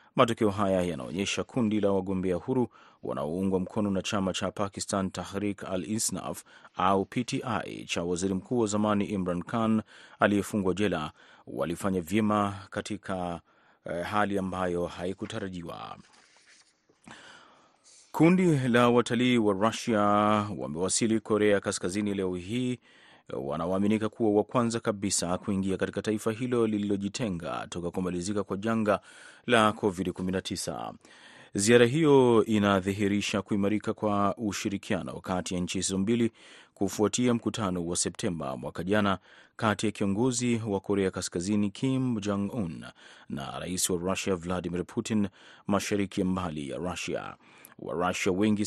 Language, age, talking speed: Swahili, 30-49, 120 wpm